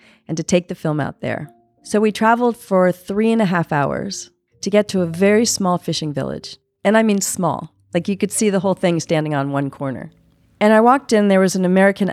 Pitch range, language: 140-190 Hz, English